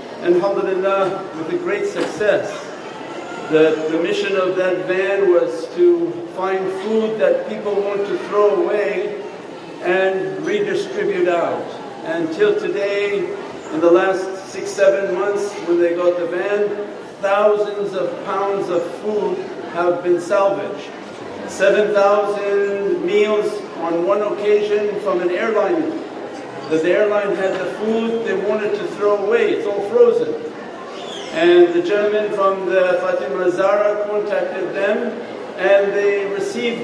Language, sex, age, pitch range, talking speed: English, male, 50-69, 190-220 Hz, 130 wpm